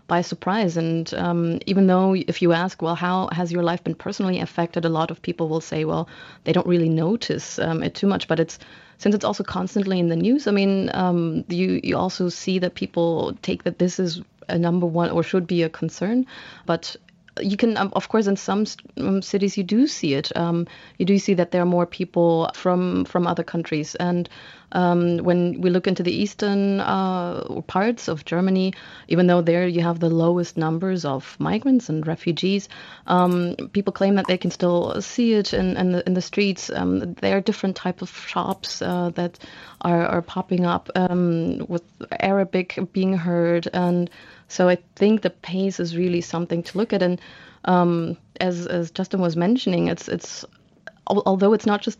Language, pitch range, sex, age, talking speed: English, 170-195 Hz, female, 30-49, 195 wpm